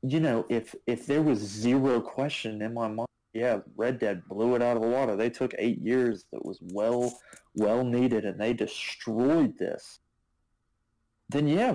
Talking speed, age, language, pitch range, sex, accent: 180 wpm, 30-49, English, 115-145 Hz, male, American